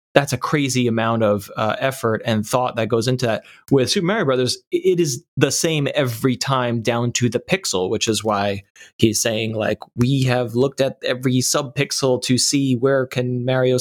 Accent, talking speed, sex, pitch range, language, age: American, 195 wpm, male, 115-140 Hz, English, 30-49